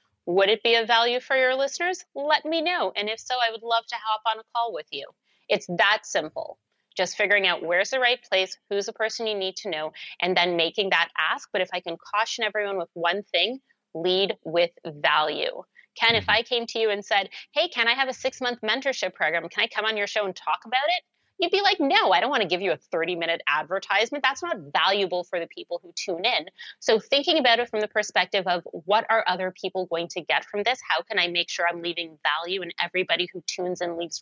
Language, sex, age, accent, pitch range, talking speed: English, female, 30-49, American, 175-230 Hz, 240 wpm